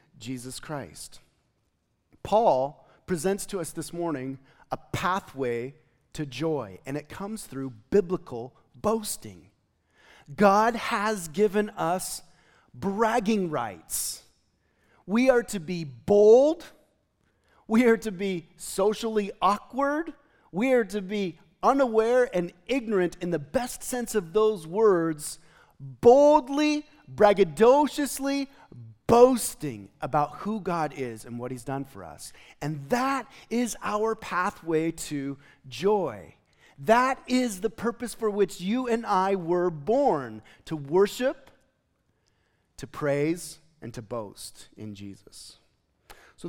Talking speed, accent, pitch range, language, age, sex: 115 wpm, American, 140-215 Hz, English, 40-59, male